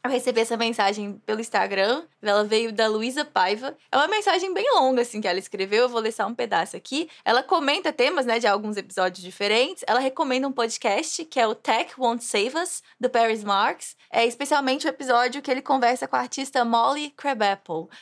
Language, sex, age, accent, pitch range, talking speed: English, female, 20-39, Brazilian, 210-265 Hz, 200 wpm